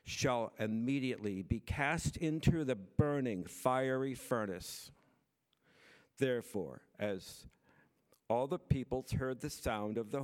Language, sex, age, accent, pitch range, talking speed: English, male, 60-79, American, 115-145 Hz, 110 wpm